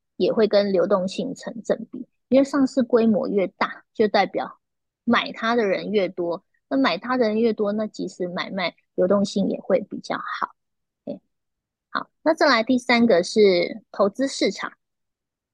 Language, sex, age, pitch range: Chinese, female, 20-39, 200-250 Hz